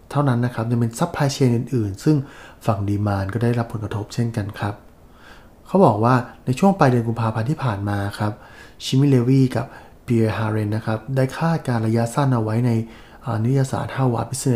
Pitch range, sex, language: 110-130 Hz, male, English